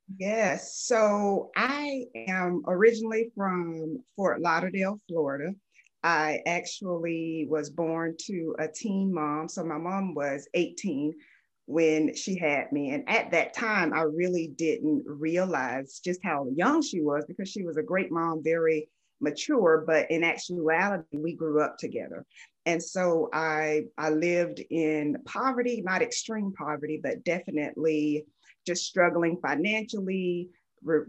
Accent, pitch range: American, 155-200 Hz